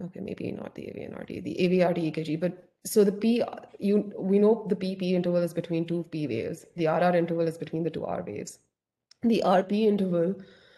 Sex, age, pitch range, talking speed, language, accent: female, 30-49, 170-190 Hz, 195 wpm, English, Indian